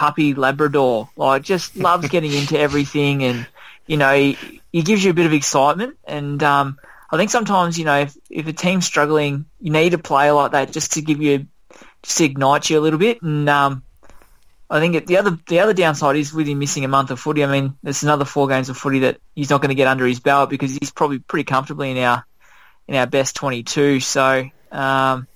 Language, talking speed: English, 220 wpm